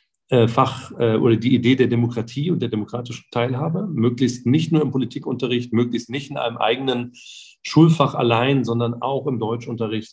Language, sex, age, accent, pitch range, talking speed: German, male, 40-59, German, 110-130 Hz, 160 wpm